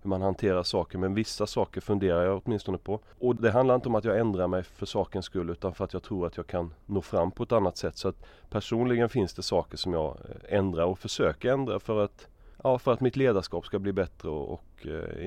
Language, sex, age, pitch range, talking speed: Swedish, male, 30-49, 85-105 Hz, 245 wpm